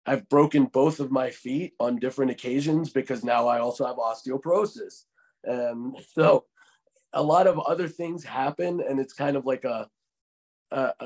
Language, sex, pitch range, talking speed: English, male, 125-160 Hz, 165 wpm